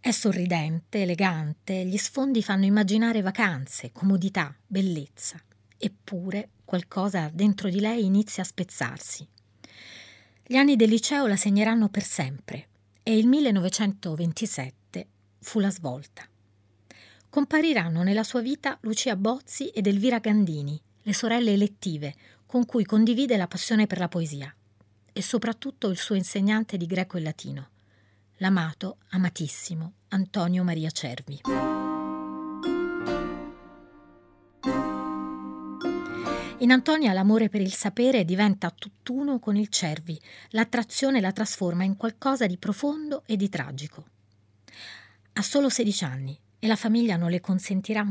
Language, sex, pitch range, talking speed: Italian, female, 145-220 Hz, 120 wpm